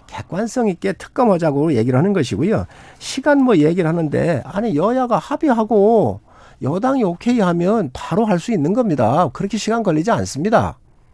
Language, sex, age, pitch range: Korean, male, 50-69, 170-240 Hz